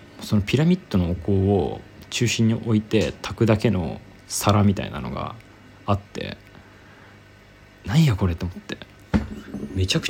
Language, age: Japanese, 20-39